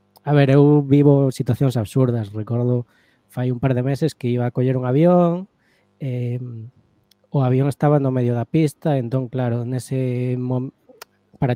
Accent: Spanish